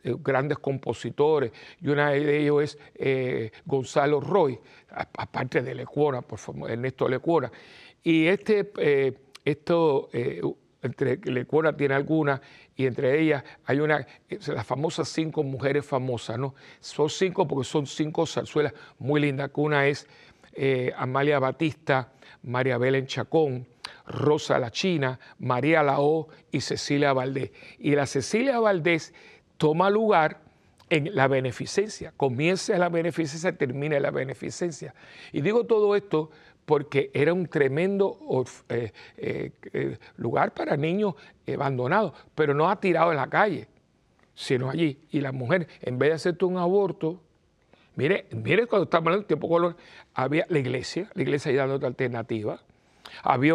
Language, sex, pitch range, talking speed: Spanish, male, 135-165 Hz, 140 wpm